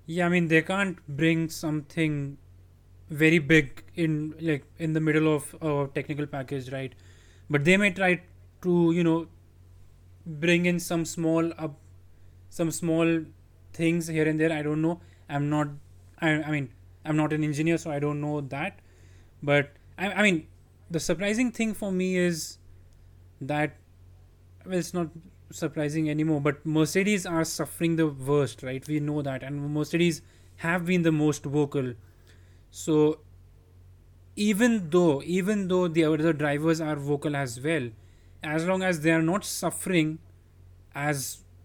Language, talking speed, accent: English, 155 wpm, Indian